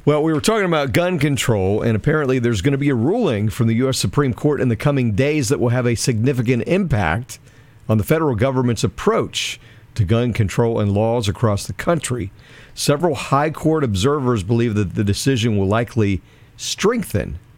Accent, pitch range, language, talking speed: American, 105-135 Hz, English, 185 wpm